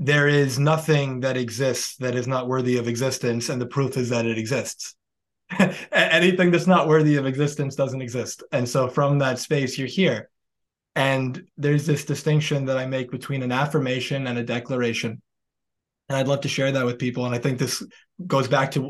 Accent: American